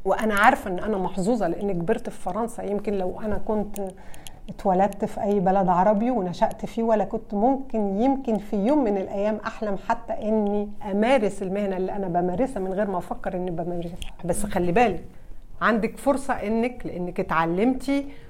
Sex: female